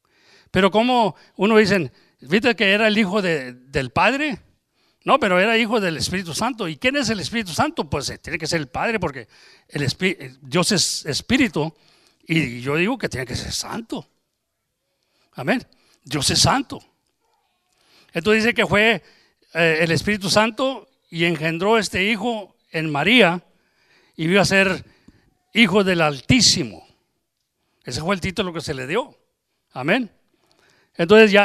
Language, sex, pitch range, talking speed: English, male, 155-210 Hz, 145 wpm